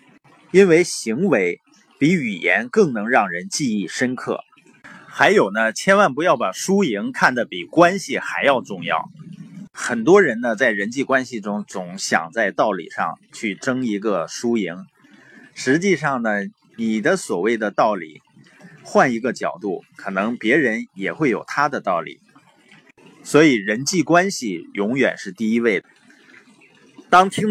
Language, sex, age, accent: Chinese, male, 20-39, native